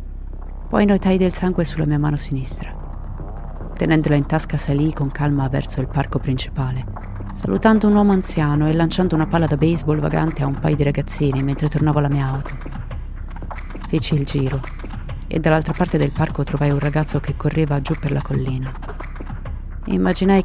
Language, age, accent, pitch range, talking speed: Italian, 30-49, native, 135-160 Hz, 165 wpm